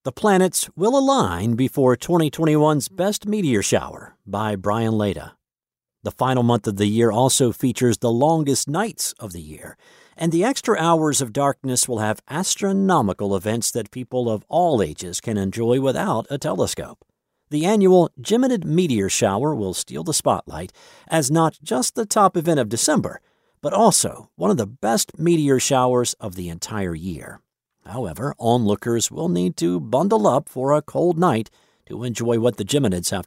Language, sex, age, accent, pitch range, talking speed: English, male, 50-69, American, 110-165 Hz, 165 wpm